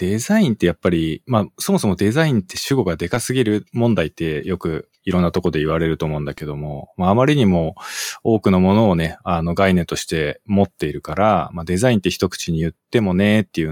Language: Japanese